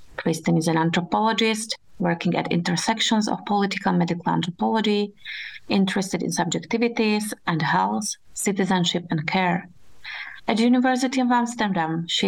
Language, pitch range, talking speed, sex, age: Czech, 175-215 Hz, 125 wpm, female, 30-49